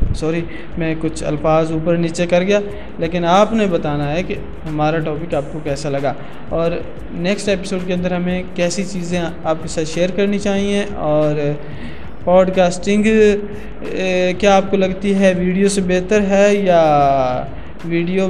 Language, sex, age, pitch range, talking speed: Urdu, male, 20-39, 155-190 Hz, 155 wpm